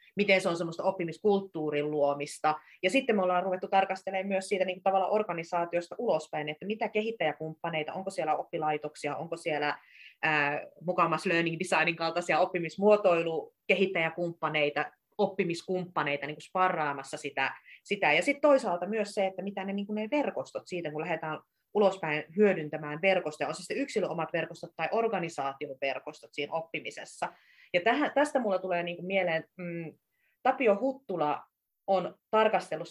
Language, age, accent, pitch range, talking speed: Finnish, 30-49, native, 155-195 Hz, 140 wpm